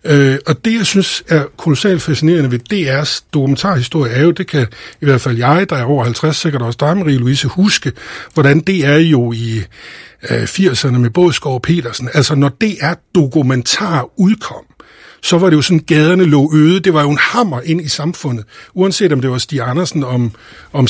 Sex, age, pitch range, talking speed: male, 60-79, 135-180 Hz, 190 wpm